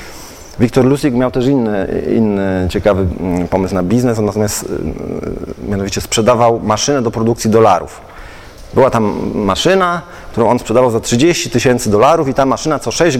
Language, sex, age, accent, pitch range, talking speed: Polish, male, 30-49, native, 115-145 Hz, 150 wpm